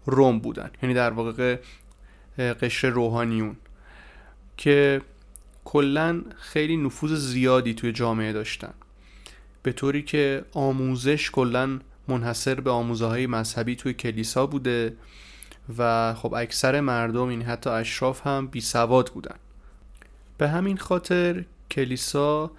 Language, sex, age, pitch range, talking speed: Persian, male, 30-49, 120-140 Hz, 110 wpm